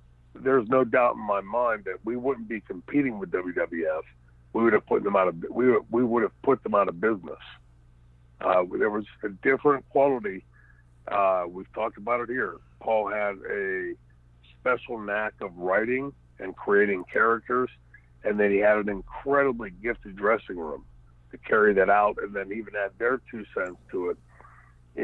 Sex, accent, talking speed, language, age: male, American, 175 wpm, English, 60-79